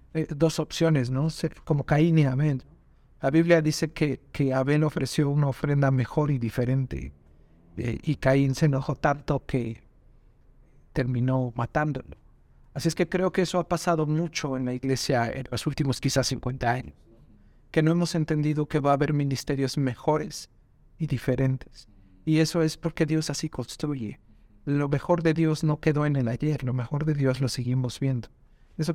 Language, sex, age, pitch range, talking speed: English, male, 50-69, 130-160 Hz, 170 wpm